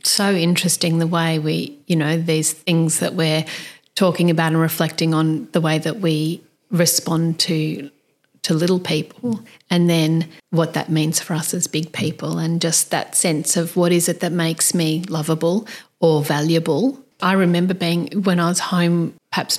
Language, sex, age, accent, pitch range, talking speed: English, female, 40-59, Australian, 165-200 Hz, 175 wpm